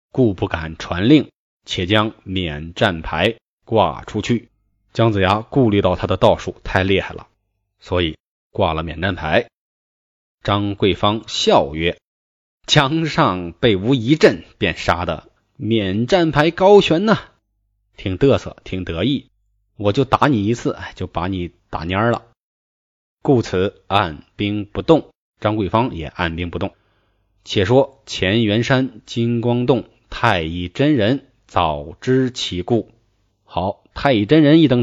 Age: 20-39